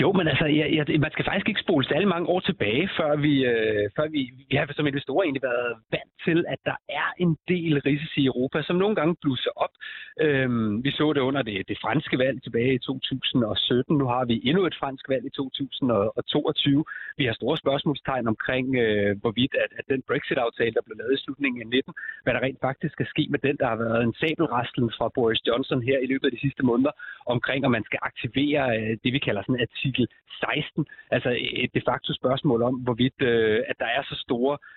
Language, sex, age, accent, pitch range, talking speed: Danish, male, 30-49, native, 120-150 Hz, 220 wpm